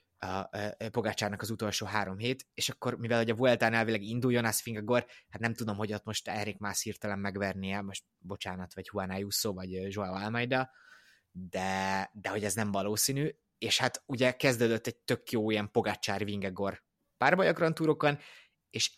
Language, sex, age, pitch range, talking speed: Hungarian, male, 20-39, 100-125 Hz, 165 wpm